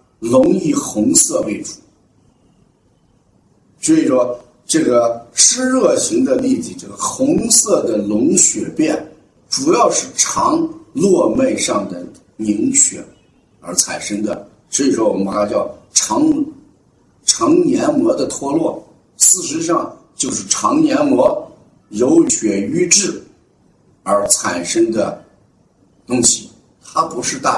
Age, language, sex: 50-69, Chinese, male